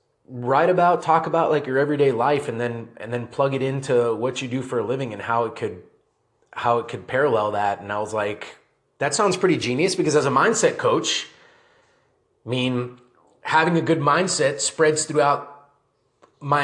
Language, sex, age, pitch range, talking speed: English, male, 30-49, 125-165 Hz, 190 wpm